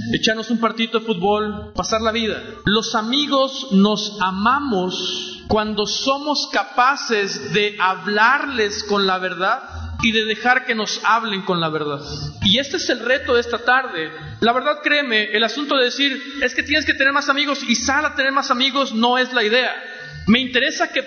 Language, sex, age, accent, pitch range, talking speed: Spanish, male, 50-69, Mexican, 220-275 Hz, 180 wpm